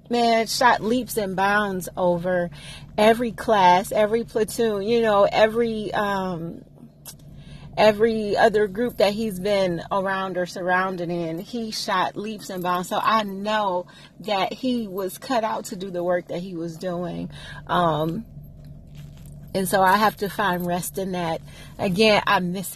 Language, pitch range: English, 180-225 Hz